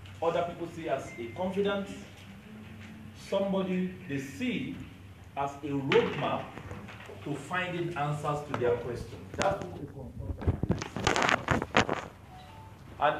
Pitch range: 125-185 Hz